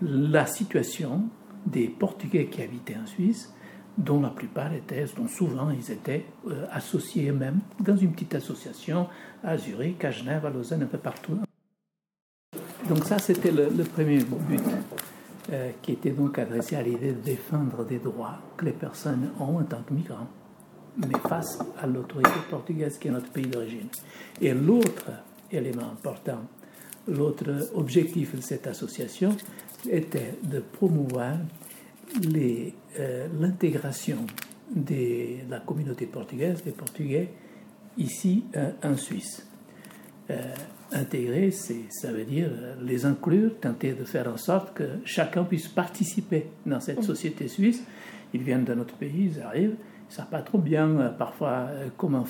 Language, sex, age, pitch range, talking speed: French, male, 60-79, 135-195 Hz, 155 wpm